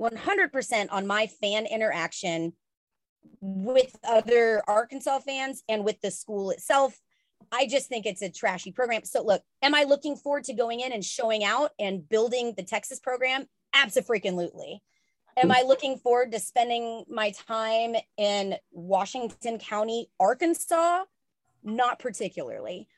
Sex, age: female, 30-49